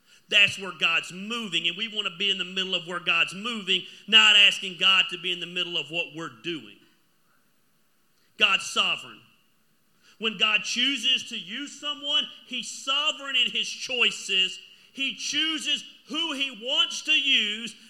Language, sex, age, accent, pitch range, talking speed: English, male, 40-59, American, 185-235 Hz, 160 wpm